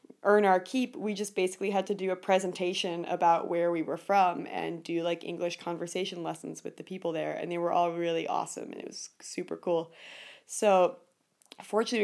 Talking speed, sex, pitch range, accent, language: 195 wpm, female, 175-205 Hz, American, English